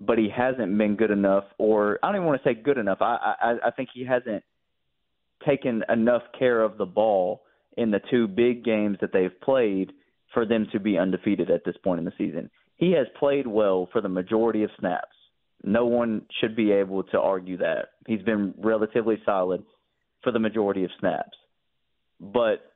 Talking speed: 190 wpm